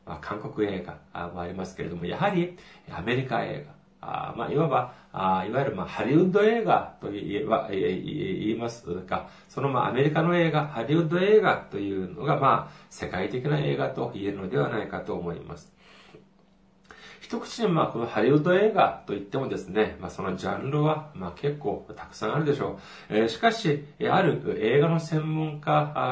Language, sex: Japanese, male